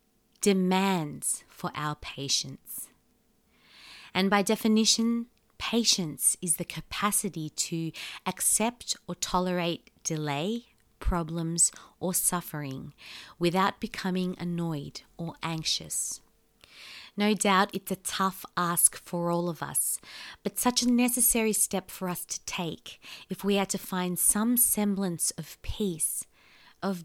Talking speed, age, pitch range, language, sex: 120 wpm, 30-49, 170-205 Hz, English, female